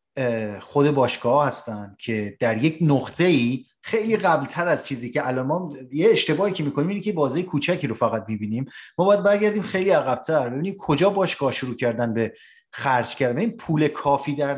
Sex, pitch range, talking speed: male, 130-180 Hz, 175 wpm